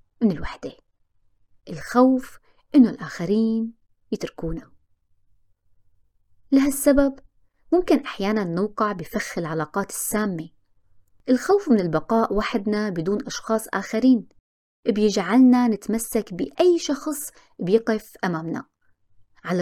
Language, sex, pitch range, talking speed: Arabic, female, 165-260 Hz, 85 wpm